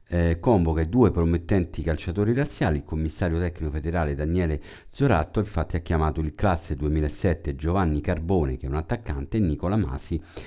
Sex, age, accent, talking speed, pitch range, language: male, 50-69, native, 155 wpm, 75-95 Hz, Italian